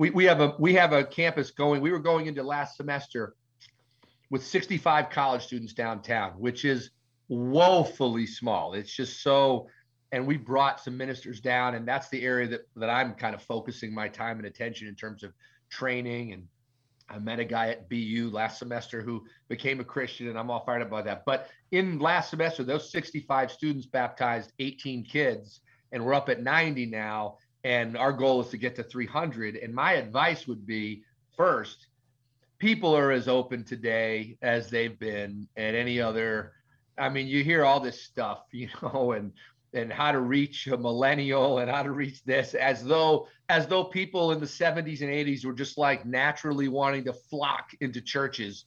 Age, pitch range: 40-59, 120-140 Hz